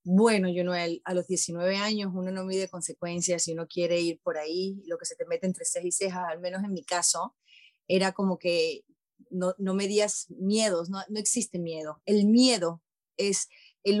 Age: 30-49